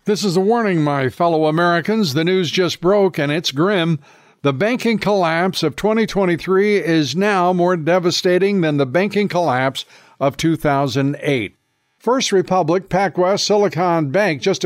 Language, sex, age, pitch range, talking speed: English, male, 60-79, 150-195 Hz, 145 wpm